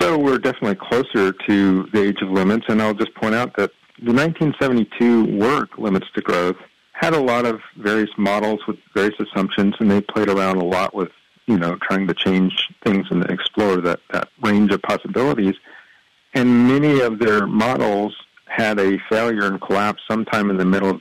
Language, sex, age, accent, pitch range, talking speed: English, male, 50-69, American, 95-110 Hz, 185 wpm